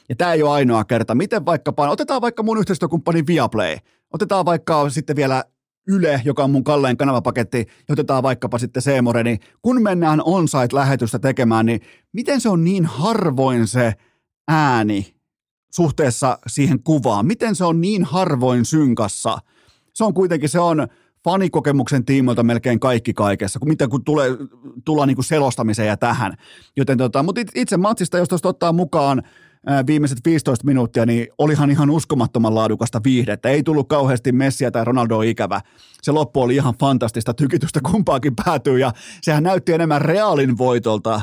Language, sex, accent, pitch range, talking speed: Finnish, male, native, 120-165 Hz, 155 wpm